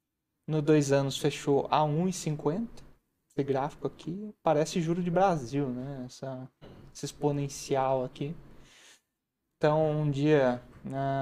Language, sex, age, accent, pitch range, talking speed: Portuguese, male, 20-39, Brazilian, 135-155 Hz, 120 wpm